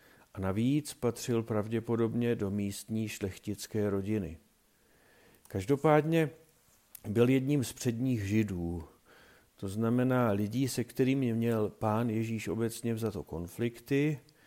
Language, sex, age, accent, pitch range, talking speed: Czech, male, 50-69, native, 100-125 Hz, 110 wpm